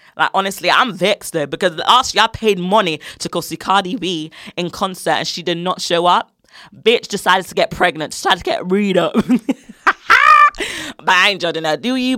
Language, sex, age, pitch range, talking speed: English, female, 20-39, 170-215 Hz, 180 wpm